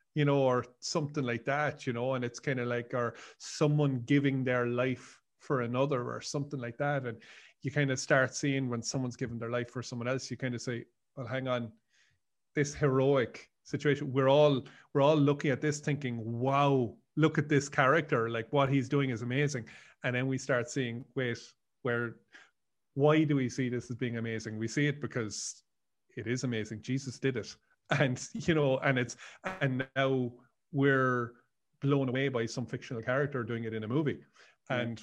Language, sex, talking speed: English, male, 190 wpm